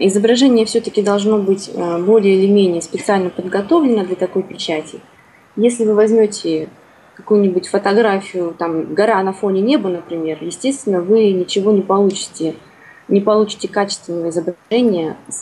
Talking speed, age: 130 wpm, 20-39